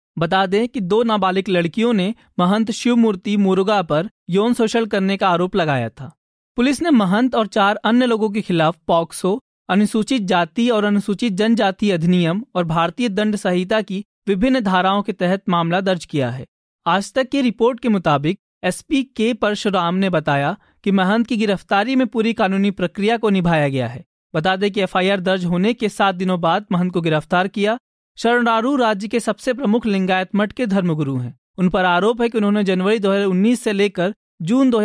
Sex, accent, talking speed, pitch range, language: male, native, 180 wpm, 185-225 Hz, Hindi